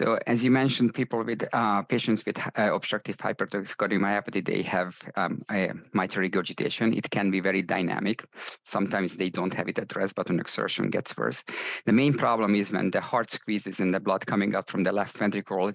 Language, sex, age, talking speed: English, male, 50-69, 195 wpm